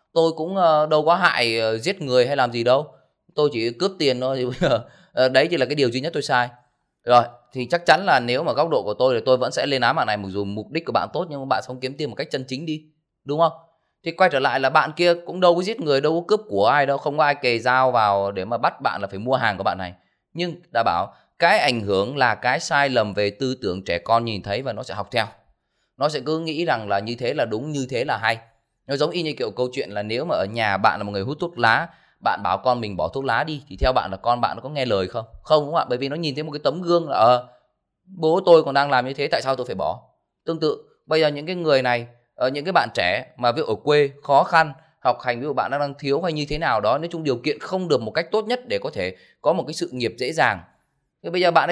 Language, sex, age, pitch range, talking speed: Vietnamese, male, 20-39, 115-160 Hz, 300 wpm